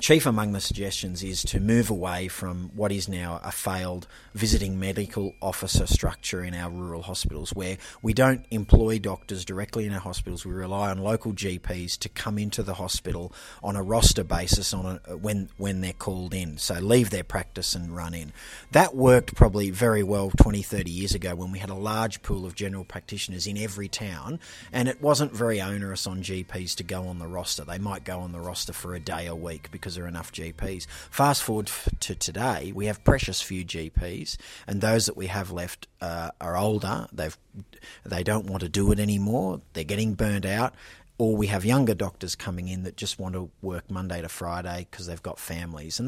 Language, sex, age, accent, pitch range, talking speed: English, male, 30-49, Australian, 90-110 Hz, 205 wpm